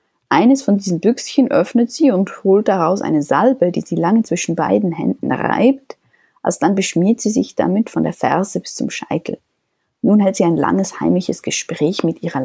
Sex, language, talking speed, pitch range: female, German, 185 wpm, 175-240 Hz